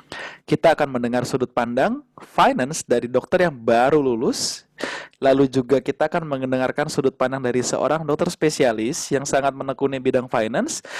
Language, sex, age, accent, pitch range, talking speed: Indonesian, male, 20-39, native, 120-160 Hz, 145 wpm